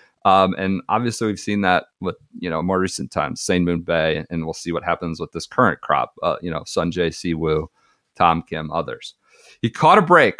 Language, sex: English, male